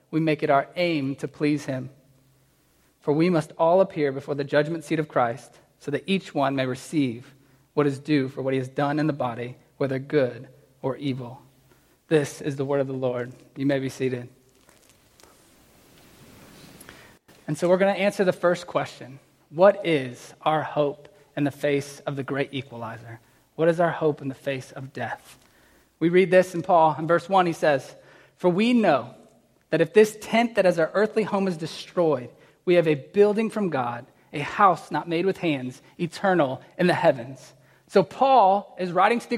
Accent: American